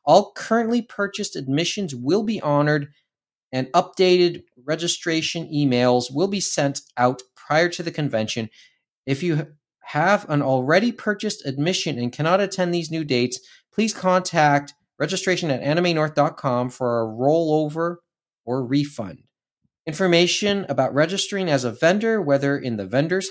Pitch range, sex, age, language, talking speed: 130-185 Hz, male, 30-49, English, 135 wpm